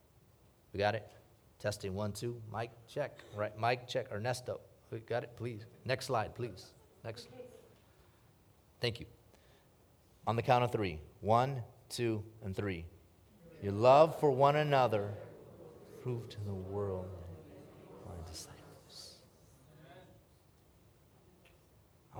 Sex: male